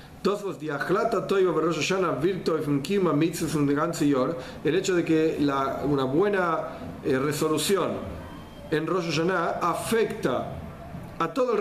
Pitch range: 150-185 Hz